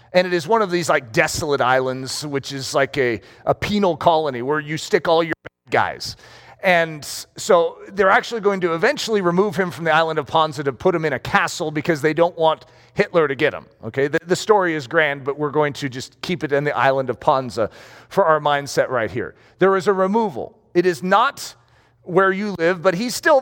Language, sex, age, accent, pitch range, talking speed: English, male, 40-59, American, 145-210 Hz, 225 wpm